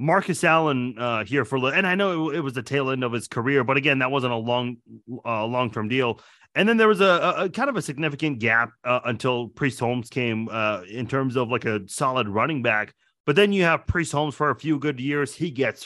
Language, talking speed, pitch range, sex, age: English, 240 wpm, 125-160 Hz, male, 30-49